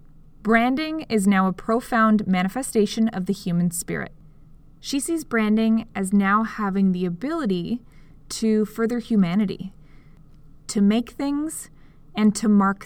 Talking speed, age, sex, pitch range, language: 125 wpm, 20-39, female, 180-230 Hz, English